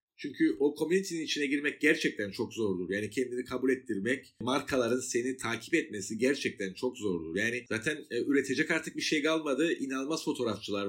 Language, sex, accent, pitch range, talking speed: Turkish, male, native, 115-155 Hz, 155 wpm